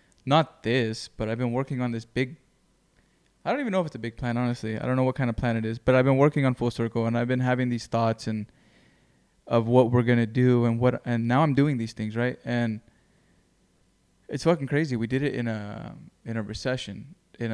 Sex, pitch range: male, 115-135 Hz